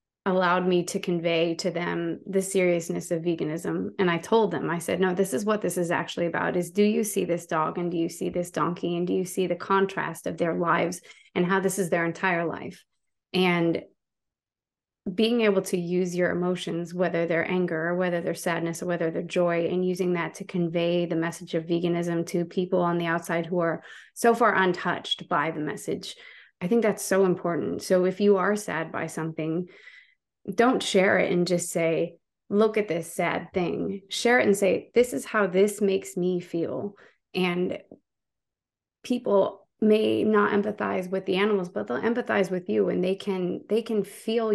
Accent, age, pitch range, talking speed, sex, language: American, 20-39, 170-195 Hz, 195 wpm, female, English